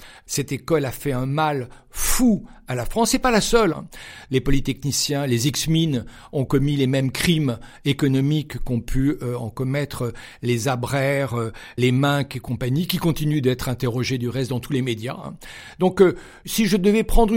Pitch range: 135-180 Hz